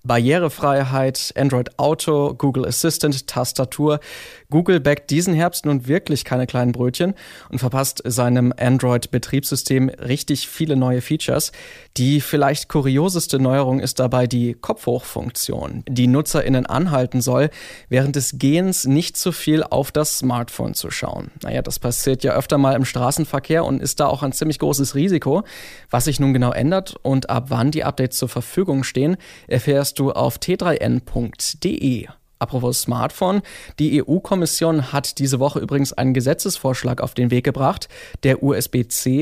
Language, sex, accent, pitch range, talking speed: German, male, German, 125-150 Hz, 150 wpm